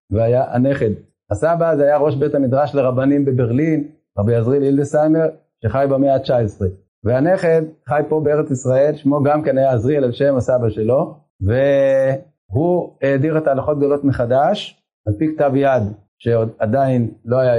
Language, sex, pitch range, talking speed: Hebrew, male, 125-155 Hz, 145 wpm